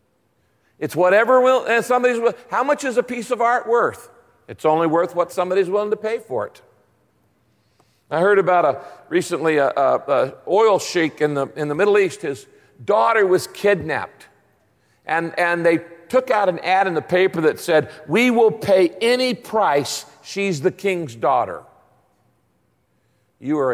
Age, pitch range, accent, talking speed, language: 50-69, 140-200 Hz, American, 160 wpm, English